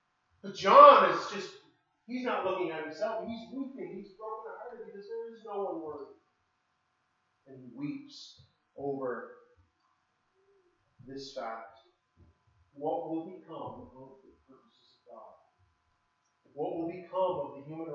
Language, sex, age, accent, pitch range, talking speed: English, male, 40-59, American, 150-225 Hz, 135 wpm